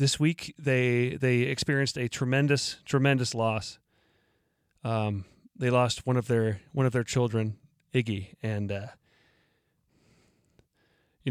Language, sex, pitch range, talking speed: English, male, 115-150 Hz, 120 wpm